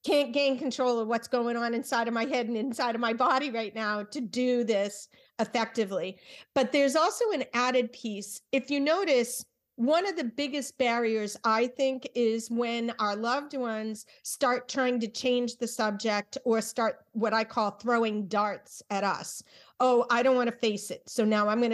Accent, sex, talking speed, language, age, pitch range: American, female, 190 wpm, English, 40-59, 215-260 Hz